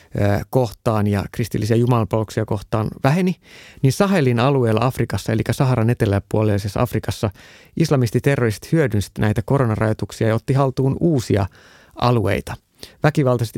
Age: 30-49